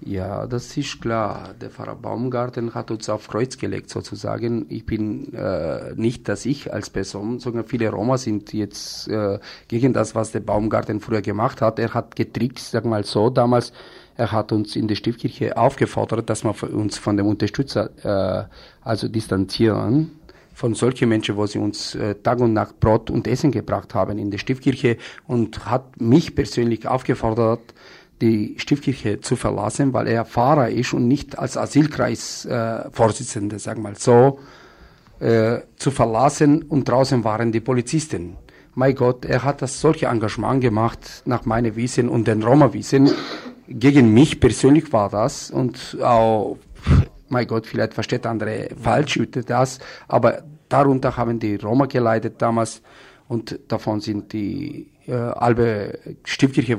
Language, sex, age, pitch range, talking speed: German, male, 40-59, 110-130 Hz, 155 wpm